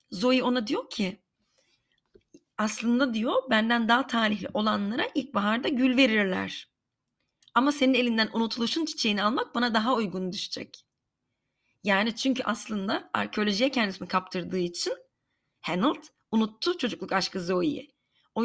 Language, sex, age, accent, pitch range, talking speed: Turkish, female, 30-49, native, 195-260 Hz, 115 wpm